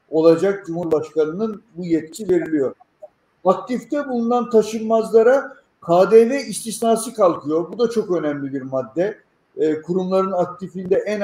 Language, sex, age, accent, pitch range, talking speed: Turkish, male, 50-69, native, 175-220 Hz, 110 wpm